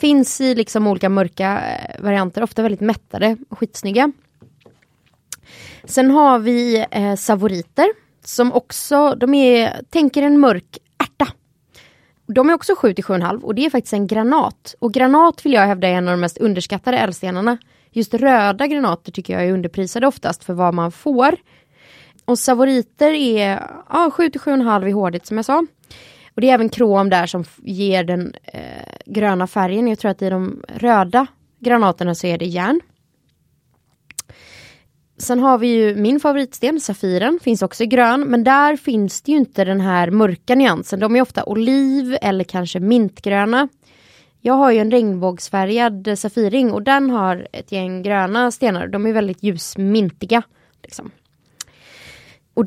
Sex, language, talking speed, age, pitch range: female, Swedish, 160 wpm, 20-39, 195-260 Hz